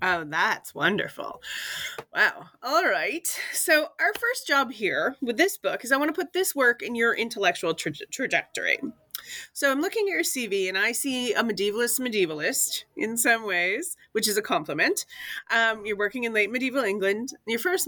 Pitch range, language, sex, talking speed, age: 185-285 Hz, English, female, 180 wpm, 30-49